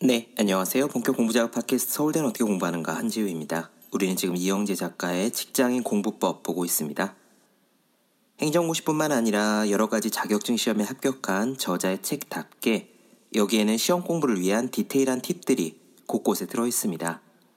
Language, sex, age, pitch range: Korean, male, 40-59, 100-145 Hz